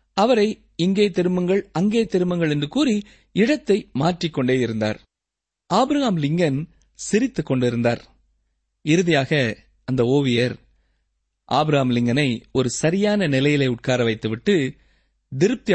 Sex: male